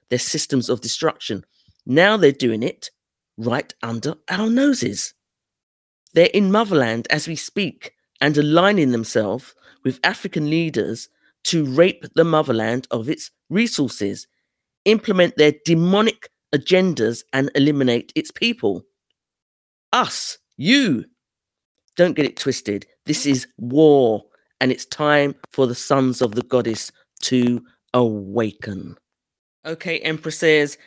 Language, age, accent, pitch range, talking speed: English, 40-59, British, 135-170 Hz, 120 wpm